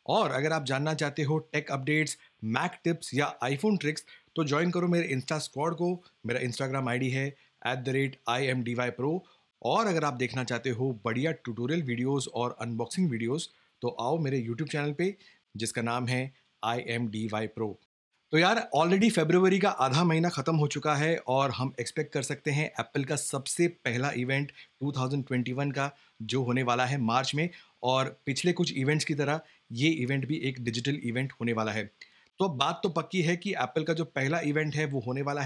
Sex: male